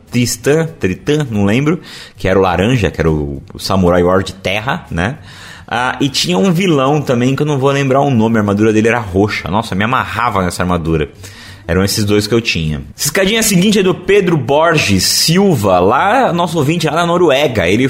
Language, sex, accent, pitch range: Portuguese, male, Brazilian, 100-145 Hz